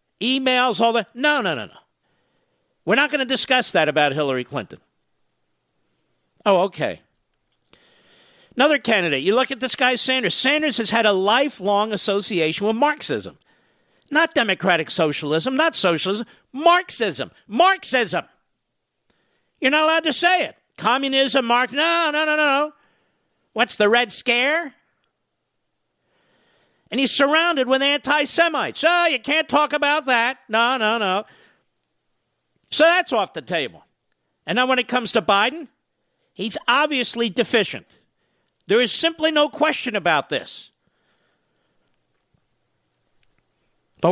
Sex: male